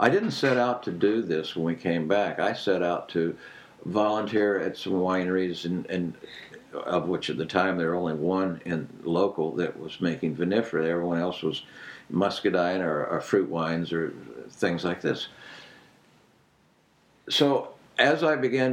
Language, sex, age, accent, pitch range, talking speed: English, male, 60-79, American, 85-110 Hz, 170 wpm